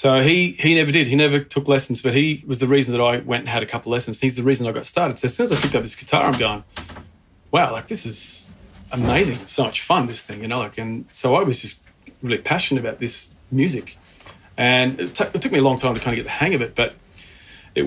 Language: English